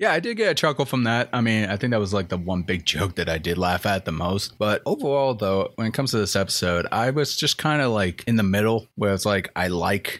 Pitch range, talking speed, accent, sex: 95-115 Hz, 290 wpm, American, male